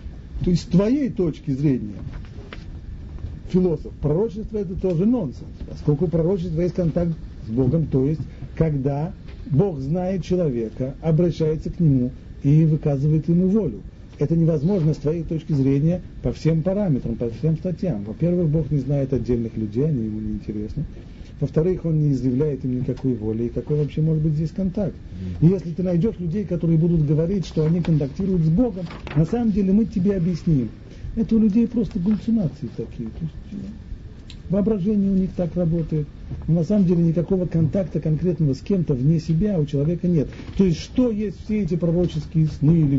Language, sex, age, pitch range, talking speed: Russian, male, 40-59, 135-185 Hz, 165 wpm